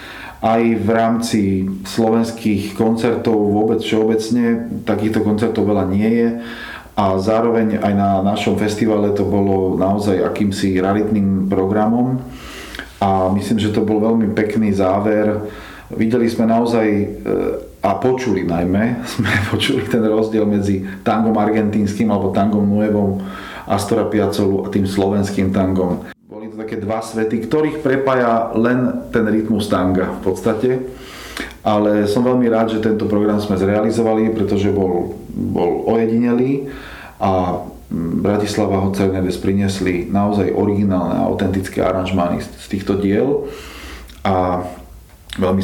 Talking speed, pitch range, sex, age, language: 125 wpm, 95-110 Hz, male, 40-59, Slovak